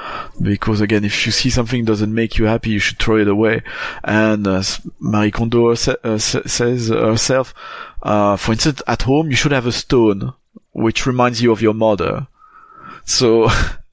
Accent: French